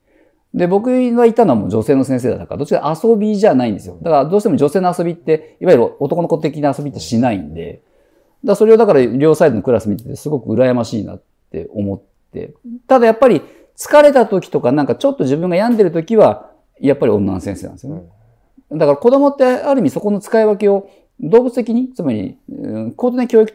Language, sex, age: Japanese, male, 50-69